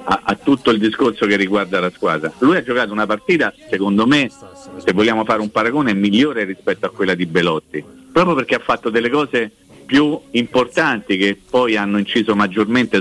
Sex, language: male, Italian